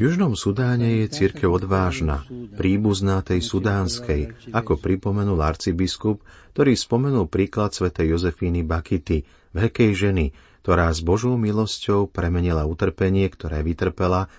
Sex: male